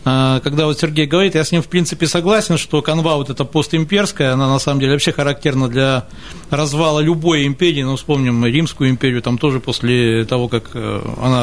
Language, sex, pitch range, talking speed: Russian, male, 130-165 Hz, 190 wpm